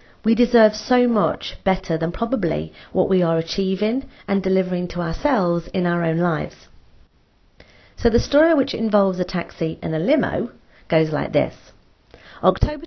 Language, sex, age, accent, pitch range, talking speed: English, female, 40-59, British, 155-200 Hz, 155 wpm